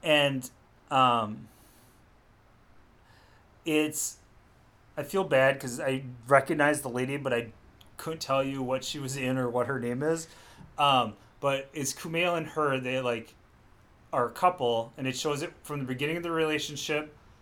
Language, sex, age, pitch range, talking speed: English, male, 30-49, 120-150 Hz, 160 wpm